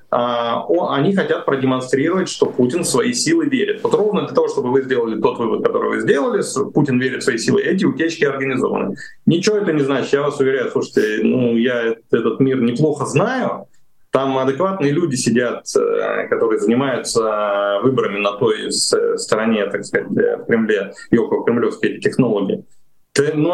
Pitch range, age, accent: 140-235 Hz, 30-49, native